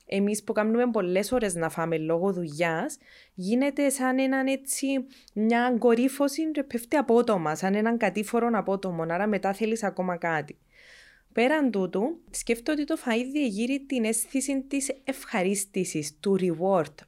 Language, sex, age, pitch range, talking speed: Greek, female, 20-39, 175-230 Hz, 140 wpm